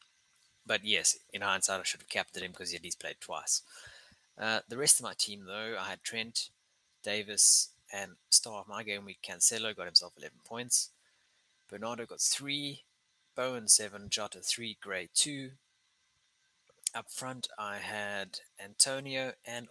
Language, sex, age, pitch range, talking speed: English, male, 20-39, 90-115 Hz, 160 wpm